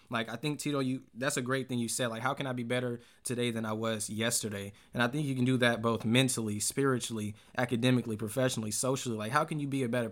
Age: 20-39